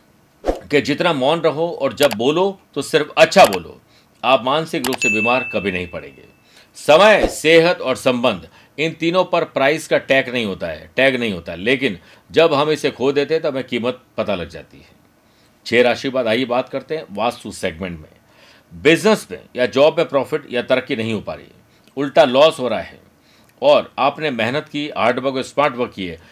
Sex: male